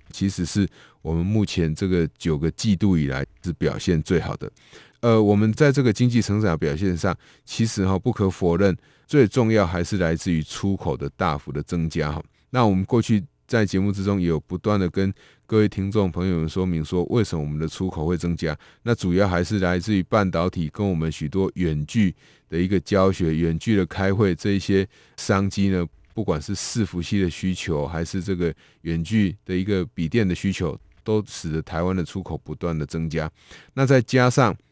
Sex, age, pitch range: male, 20-39, 85-105 Hz